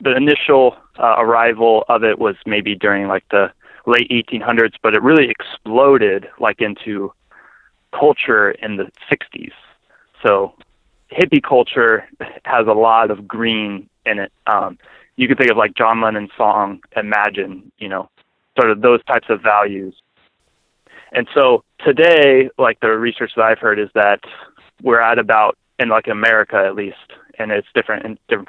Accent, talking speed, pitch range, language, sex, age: American, 160 wpm, 105-125 Hz, English, male, 20-39